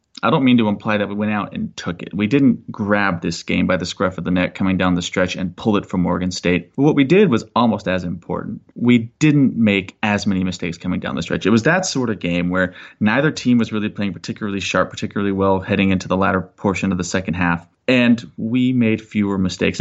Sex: male